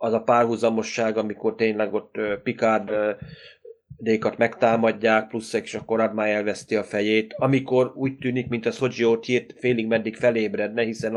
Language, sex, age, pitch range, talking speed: Hungarian, male, 30-49, 110-125 Hz, 155 wpm